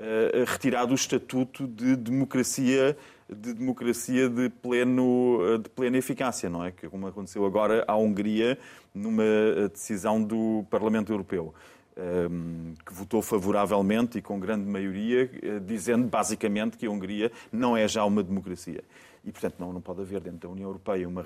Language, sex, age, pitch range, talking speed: Portuguese, male, 30-49, 100-125 Hz, 150 wpm